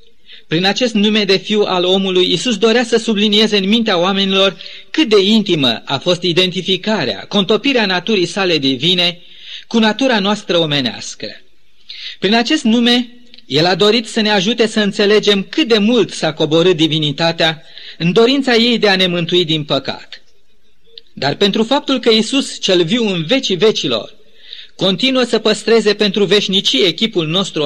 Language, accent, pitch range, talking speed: Romanian, native, 175-225 Hz, 155 wpm